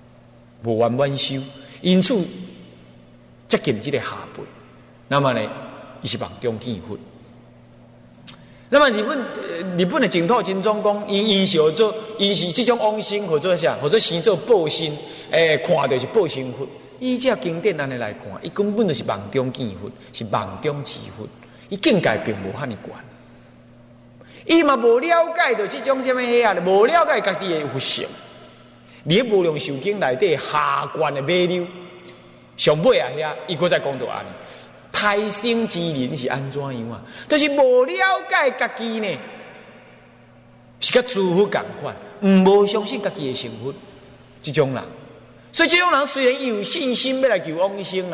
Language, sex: Chinese, male